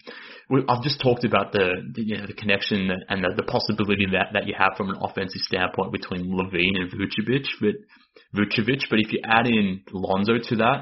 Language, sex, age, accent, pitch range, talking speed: English, male, 20-39, Australian, 95-115 Hz, 200 wpm